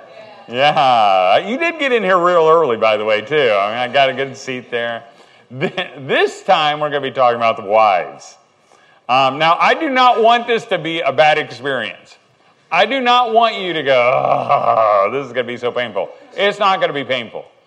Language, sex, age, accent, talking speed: English, male, 40-59, American, 215 wpm